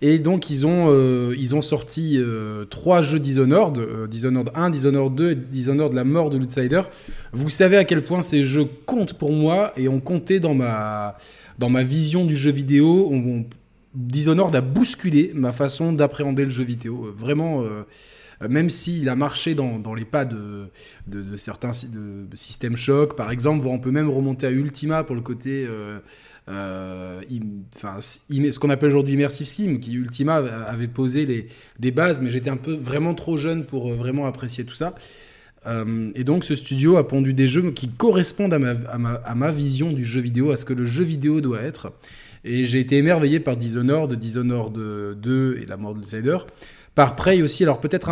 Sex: male